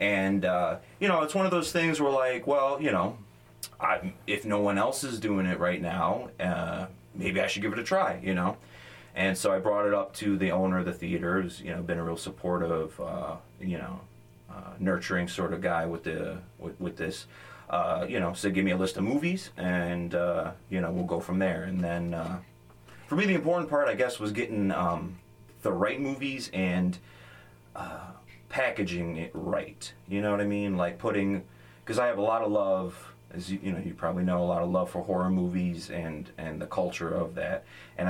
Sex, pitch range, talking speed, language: male, 85-100 Hz, 220 wpm, English